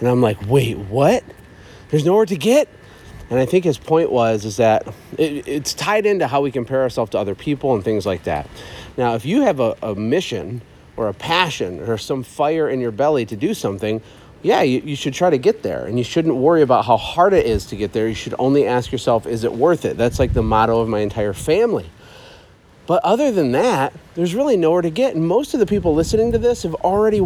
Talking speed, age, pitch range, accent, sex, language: 235 wpm, 40-59, 115-160 Hz, American, male, English